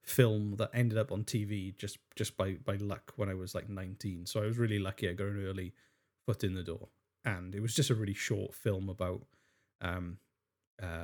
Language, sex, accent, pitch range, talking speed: English, male, British, 100-120 Hz, 215 wpm